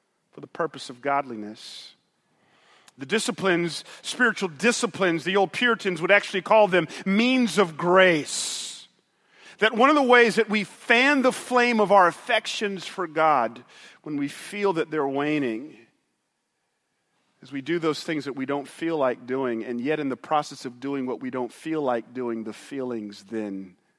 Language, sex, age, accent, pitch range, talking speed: English, male, 40-59, American, 135-205 Hz, 170 wpm